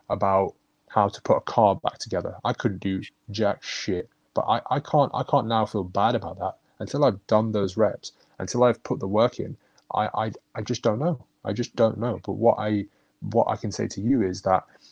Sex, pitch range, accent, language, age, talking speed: male, 95-115 Hz, British, English, 20-39, 225 wpm